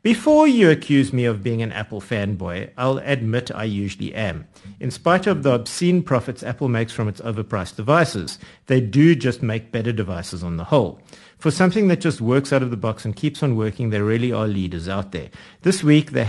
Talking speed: 210 wpm